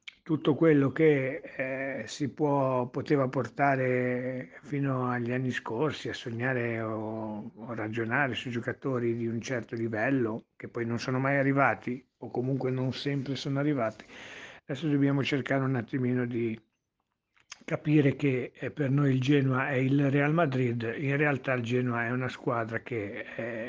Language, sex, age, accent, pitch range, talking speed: Italian, male, 60-79, native, 120-140 Hz, 150 wpm